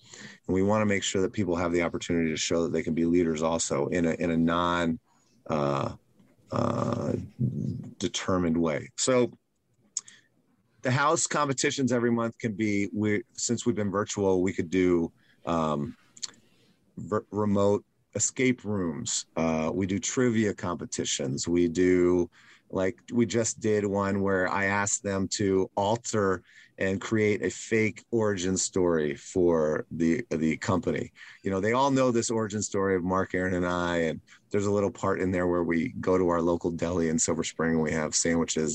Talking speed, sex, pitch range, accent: 170 wpm, male, 85-110 Hz, American